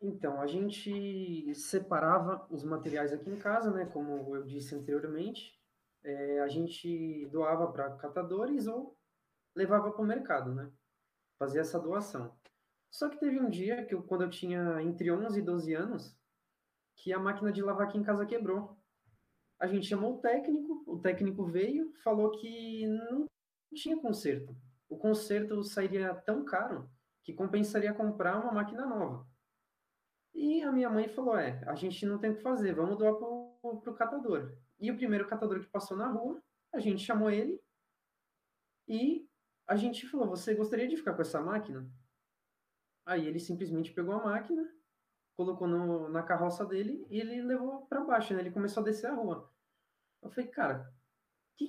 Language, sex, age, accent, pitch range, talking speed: Portuguese, male, 20-39, Brazilian, 165-230 Hz, 170 wpm